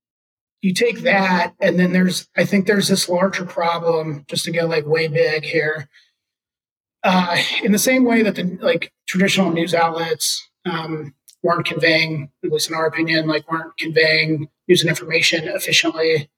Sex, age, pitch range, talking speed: male, 30-49, 165-190 Hz, 165 wpm